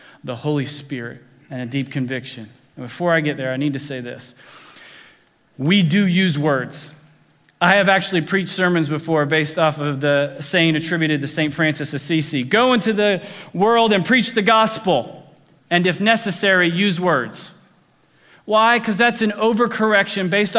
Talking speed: 165 wpm